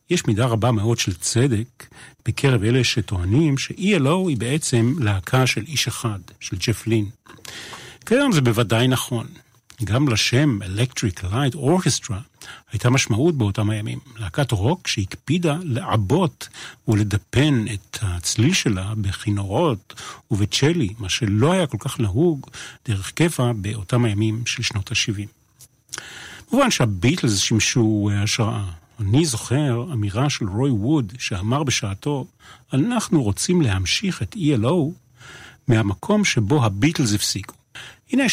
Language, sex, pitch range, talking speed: Hebrew, male, 110-145 Hz, 120 wpm